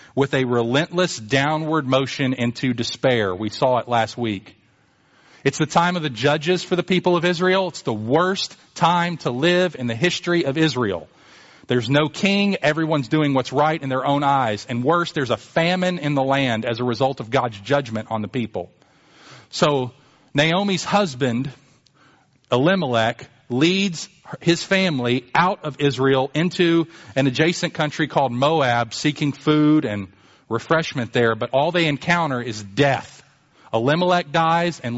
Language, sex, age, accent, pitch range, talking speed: English, male, 40-59, American, 125-170 Hz, 160 wpm